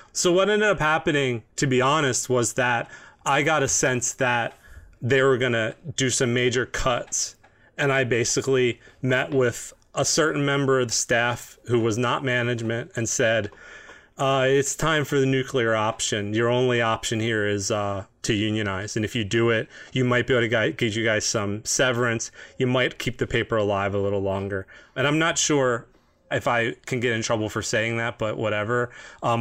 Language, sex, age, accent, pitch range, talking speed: English, male, 30-49, American, 110-130 Hz, 195 wpm